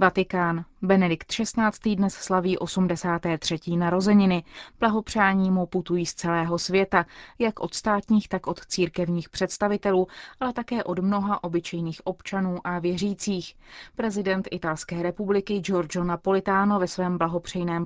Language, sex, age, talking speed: Czech, female, 20-39, 120 wpm